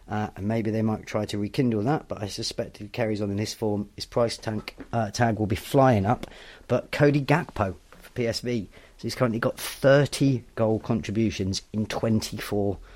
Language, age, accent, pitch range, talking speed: English, 30-49, British, 100-115 Hz, 195 wpm